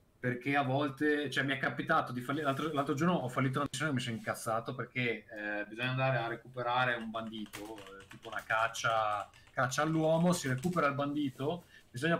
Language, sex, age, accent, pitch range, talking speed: Italian, male, 30-49, native, 120-155 Hz, 185 wpm